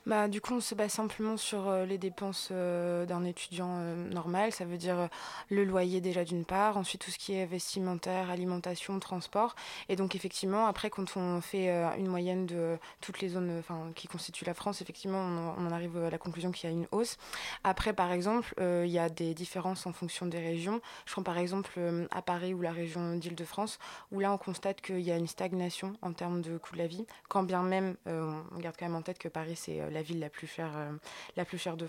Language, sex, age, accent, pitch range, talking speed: French, female, 20-39, French, 170-190 Hz, 245 wpm